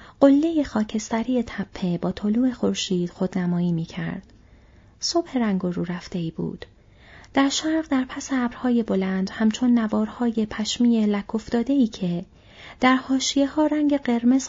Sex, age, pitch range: female, 30-49, 180-250 Hz